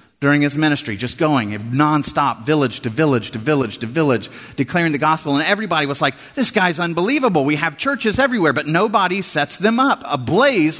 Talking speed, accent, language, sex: 185 wpm, American, English, male